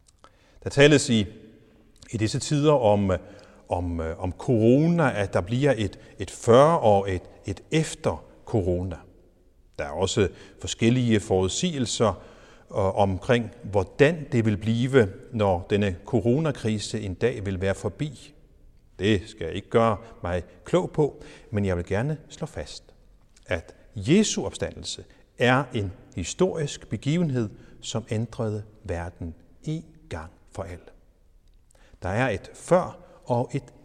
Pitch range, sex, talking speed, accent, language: 95-140 Hz, male, 130 wpm, native, Danish